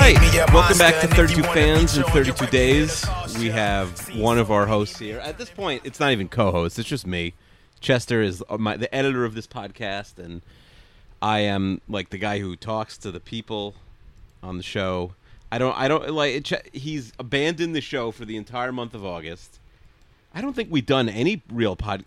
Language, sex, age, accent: English, male, 30-49, American